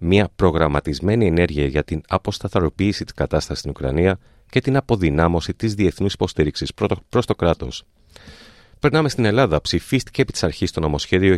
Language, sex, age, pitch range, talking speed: Greek, male, 30-49, 75-105 Hz, 150 wpm